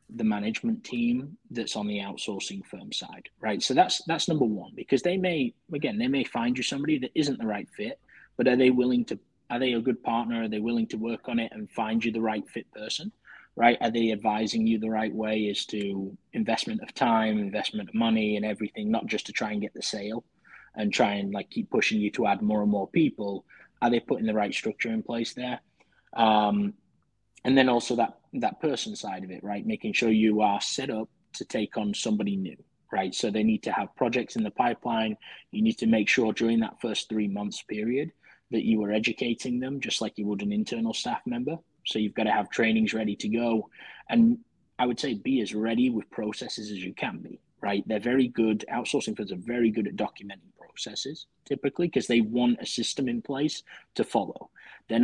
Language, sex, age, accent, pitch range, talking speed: English, male, 20-39, British, 105-130 Hz, 220 wpm